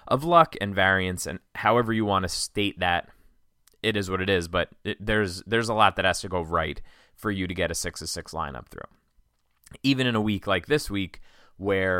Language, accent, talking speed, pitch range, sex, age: English, American, 225 wpm, 85-105 Hz, male, 20-39